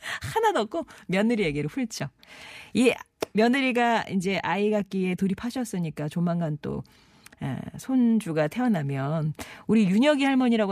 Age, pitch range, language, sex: 40-59, 155-230 Hz, Korean, female